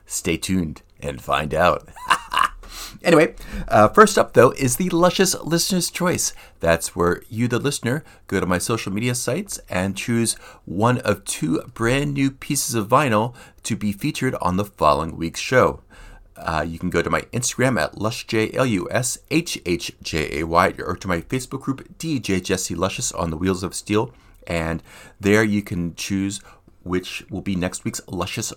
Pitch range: 95-130 Hz